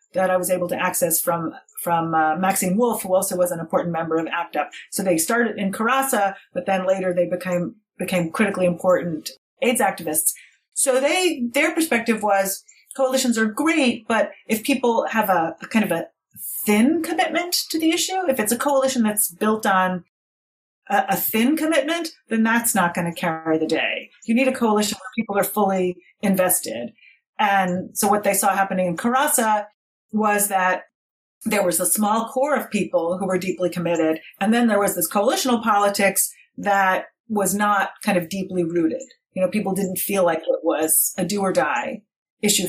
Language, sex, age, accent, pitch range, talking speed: English, female, 30-49, American, 180-235 Hz, 185 wpm